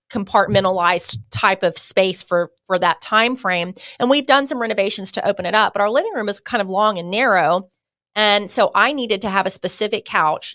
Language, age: English, 30-49